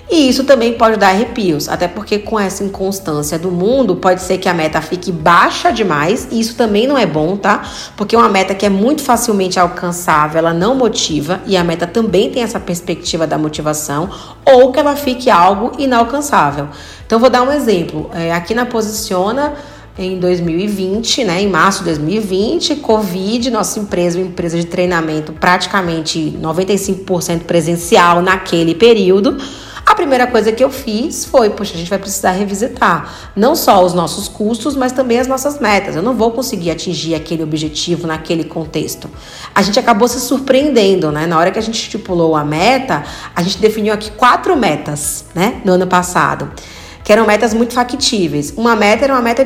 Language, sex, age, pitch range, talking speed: Portuguese, female, 30-49, 175-235 Hz, 180 wpm